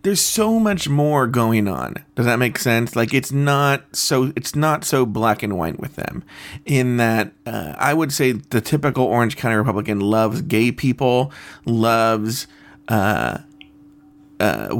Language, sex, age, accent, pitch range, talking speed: English, male, 30-49, American, 115-145 Hz, 160 wpm